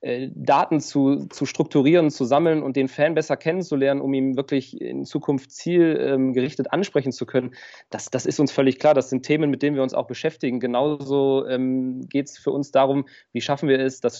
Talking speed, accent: 200 wpm, German